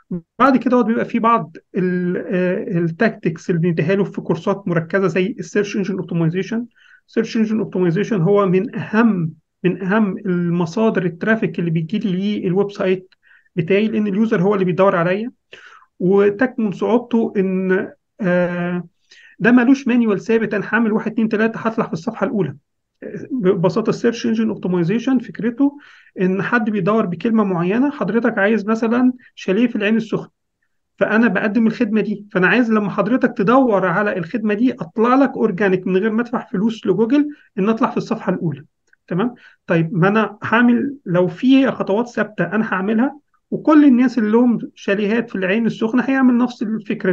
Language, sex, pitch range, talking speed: English, male, 190-235 Hz, 145 wpm